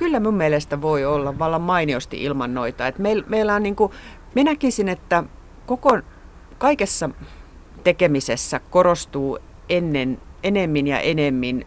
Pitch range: 135-190 Hz